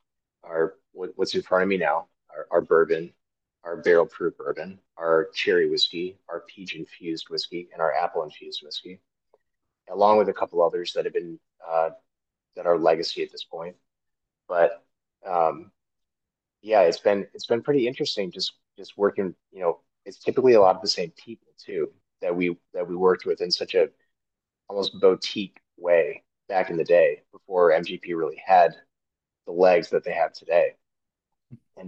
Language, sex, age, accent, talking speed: English, male, 30-49, American, 170 wpm